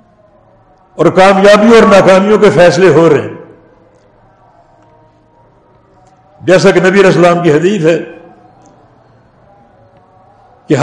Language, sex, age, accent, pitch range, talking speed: English, male, 60-79, Indian, 170-225 Hz, 95 wpm